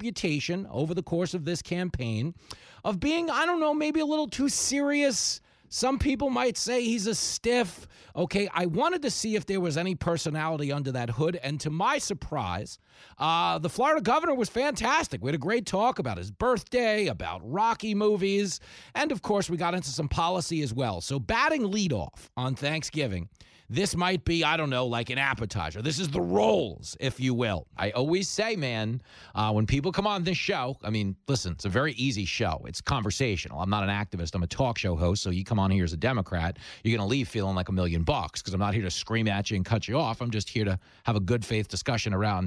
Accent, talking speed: American, 225 wpm